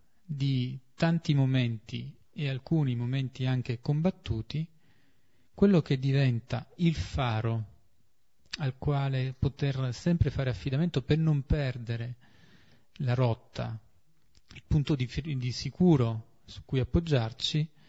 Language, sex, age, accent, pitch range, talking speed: Italian, male, 40-59, native, 115-140 Hz, 105 wpm